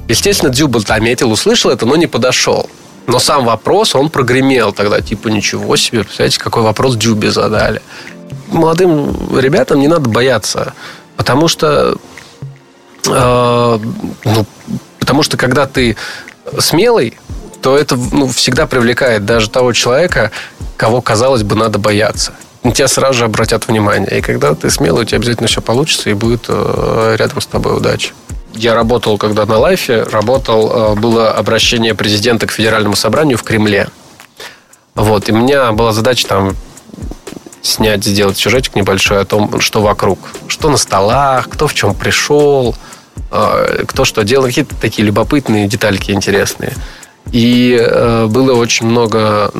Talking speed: 145 wpm